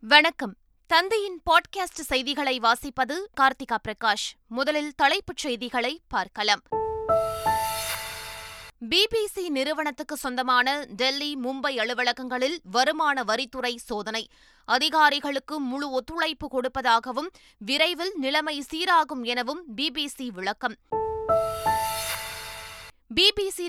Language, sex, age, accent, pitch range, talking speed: Tamil, female, 20-39, native, 240-305 Hz, 80 wpm